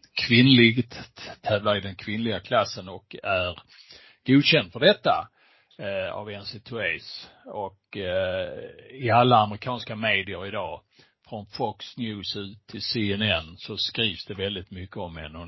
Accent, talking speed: Norwegian, 135 wpm